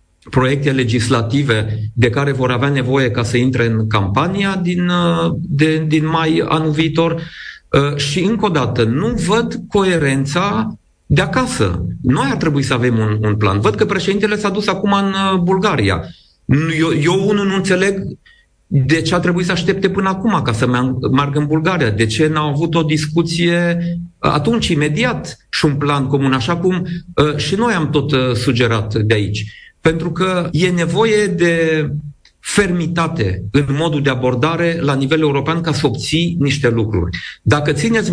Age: 40-59